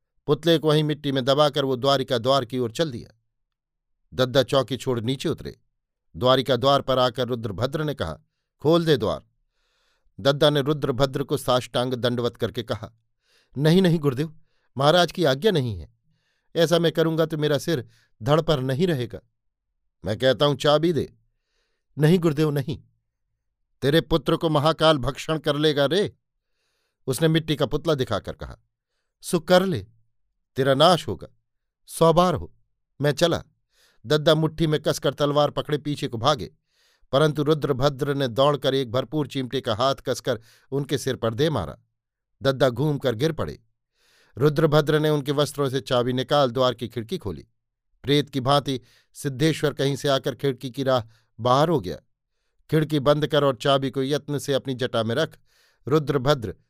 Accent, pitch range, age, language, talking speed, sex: native, 120-150 Hz, 50-69, Hindi, 165 wpm, male